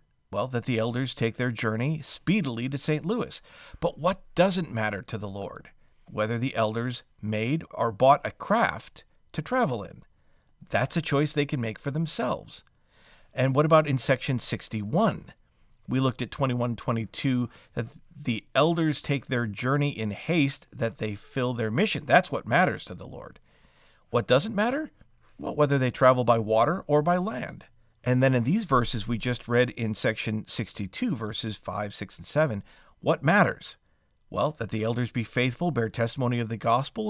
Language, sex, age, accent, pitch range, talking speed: English, male, 50-69, American, 115-155 Hz, 175 wpm